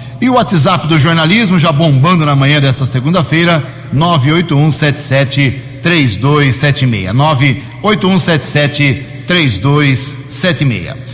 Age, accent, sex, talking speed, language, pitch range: 60-79, Brazilian, male, 70 wpm, Portuguese, 125-150 Hz